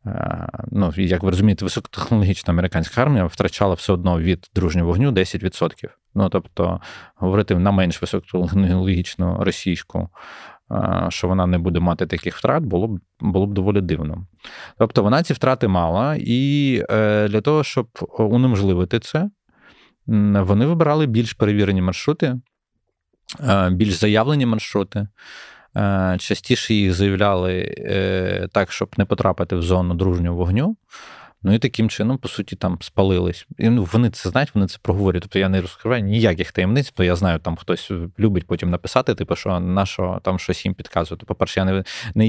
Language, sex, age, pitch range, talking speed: Ukrainian, male, 20-39, 90-110 Hz, 150 wpm